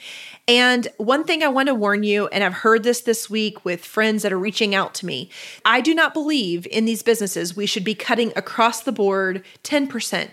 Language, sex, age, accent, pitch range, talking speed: English, female, 30-49, American, 200-265 Hz, 215 wpm